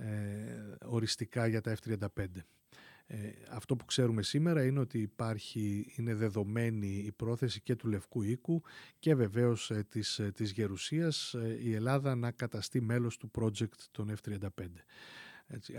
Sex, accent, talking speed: male, native, 130 wpm